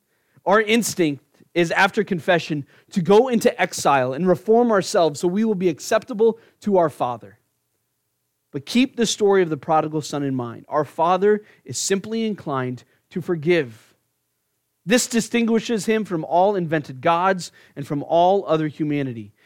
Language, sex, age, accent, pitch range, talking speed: English, male, 30-49, American, 120-180 Hz, 150 wpm